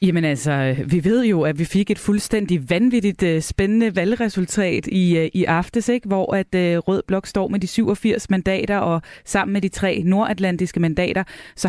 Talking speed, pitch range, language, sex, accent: 170 wpm, 165-205 Hz, Danish, female, native